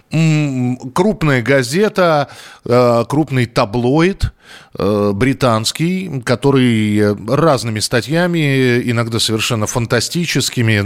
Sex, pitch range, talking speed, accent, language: male, 115-150 Hz, 60 wpm, native, Russian